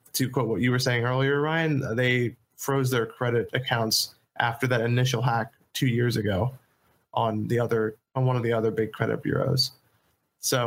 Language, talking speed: English, 180 wpm